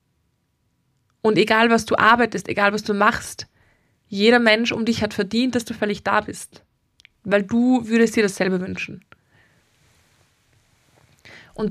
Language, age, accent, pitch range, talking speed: German, 20-39, German, 210-240 Hz, 140 wpm